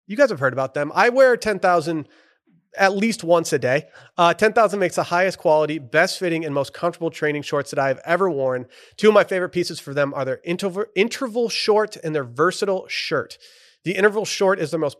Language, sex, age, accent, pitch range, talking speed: English, male, 30-49, American, 135-170 Hz, 210 wpm